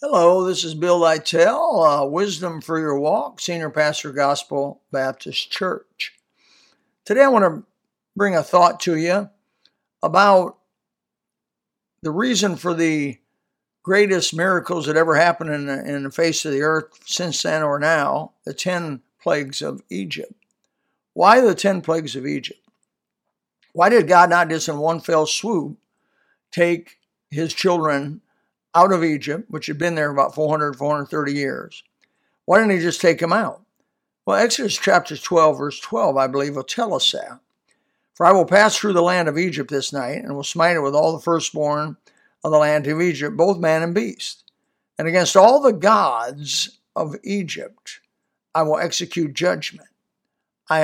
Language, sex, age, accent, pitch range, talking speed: English, male, 60-79, American, 150-200 Hz, 165 wpm